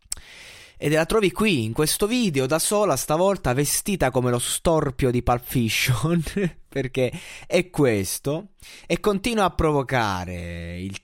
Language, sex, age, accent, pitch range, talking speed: Italian, male, 20-39, native, 110-145 Hz, 135 wpm